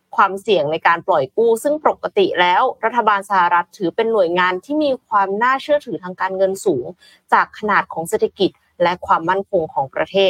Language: Thai